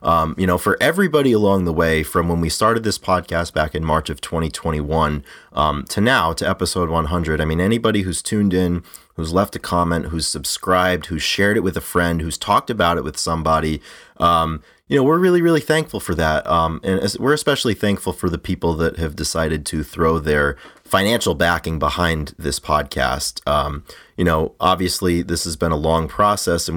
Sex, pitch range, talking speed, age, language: male, 80-95 Hz, 200 wpm, 30-49, English